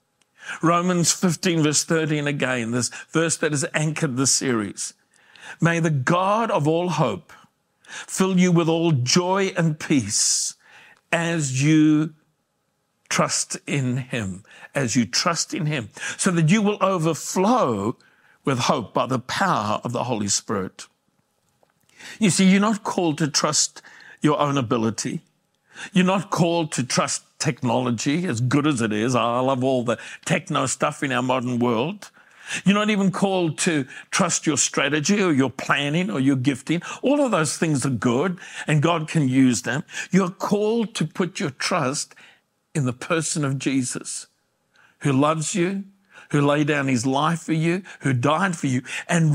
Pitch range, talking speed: 135-180 Hz, 160 wpm